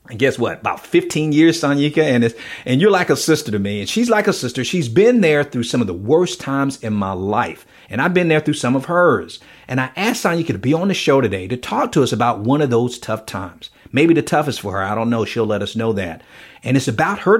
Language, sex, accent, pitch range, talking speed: English, male, American, 115-155 Hz, 270 wpm